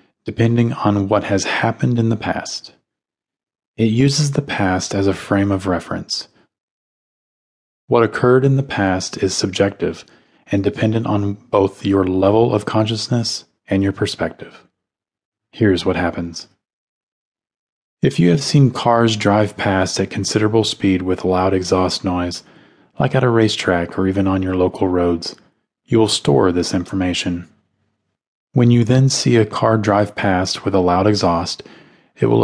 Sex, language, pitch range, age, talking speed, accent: male, English, 95-110 Hz, 30-49, 150 wpm, American